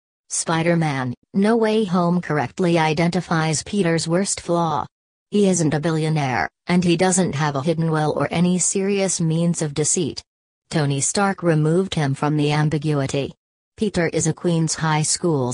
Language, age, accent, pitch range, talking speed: English, 40-59, American, 150-175 Hz, 150 wpm